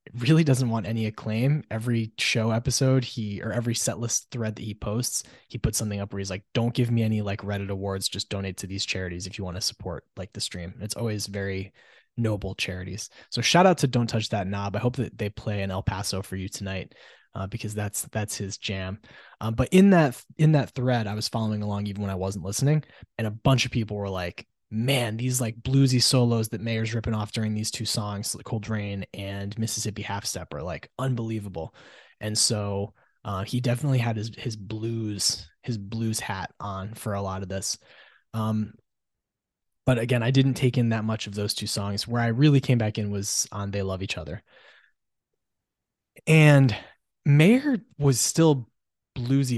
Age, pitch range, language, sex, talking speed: 20-39, 100-125 Hz, English, male, 200 wpm